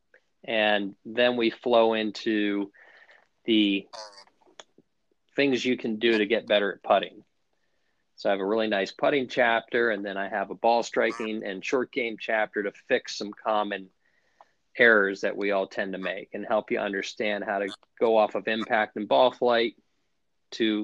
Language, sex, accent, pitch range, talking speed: English, male, American, 100-120 Hz, 170 wpm